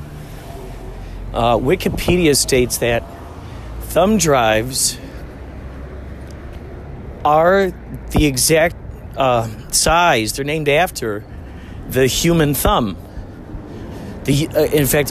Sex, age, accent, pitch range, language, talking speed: male, 40-59, American, 90-140 Hz, English, 85 wpm